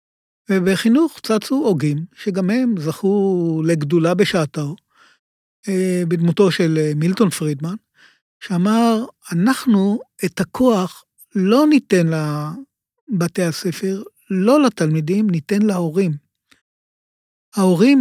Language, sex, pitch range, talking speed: Hebrew, male, 170-215 Hz, 85 wpm